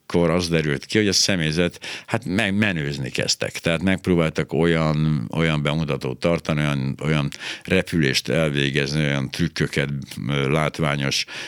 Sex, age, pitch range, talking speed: male, 60-79, 70-90 Hz, 120 wpm